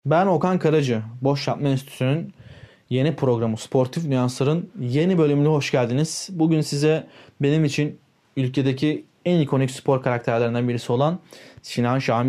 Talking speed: 130 wpm